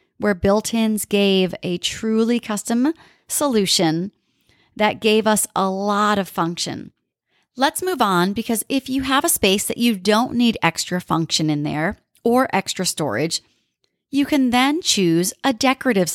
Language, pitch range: English, 175-255 Hz